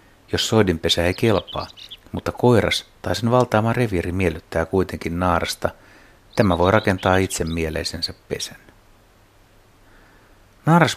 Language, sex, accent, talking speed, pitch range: Finnish, male, native, 110 wpm, 90-110 Hz